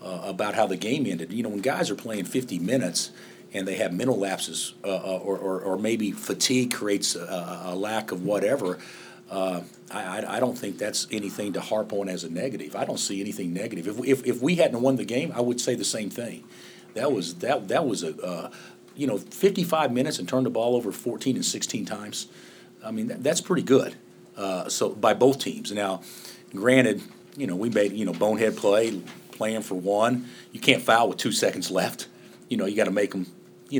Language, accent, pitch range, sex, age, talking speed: English, American, 95-125 Hz, male, 50-69, 220 wpm